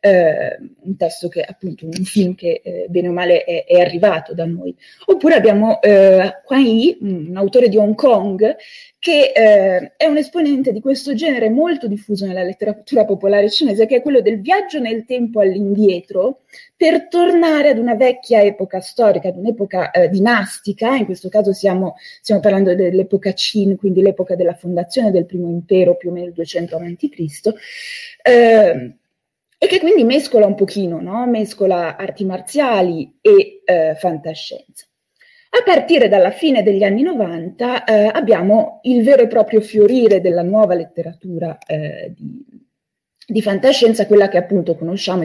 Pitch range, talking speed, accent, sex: 185-270 Hz, 150 wpm, native, female